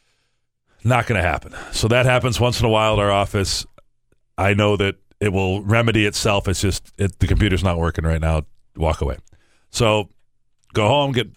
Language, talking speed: English, 185 wpm